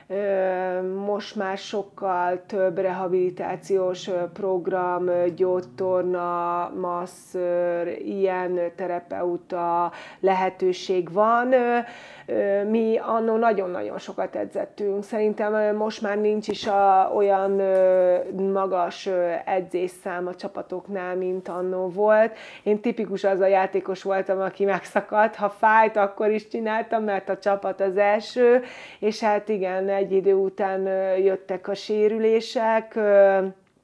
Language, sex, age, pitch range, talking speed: Hungarian, female, 30-49, 180-205 Hz, 105 wpm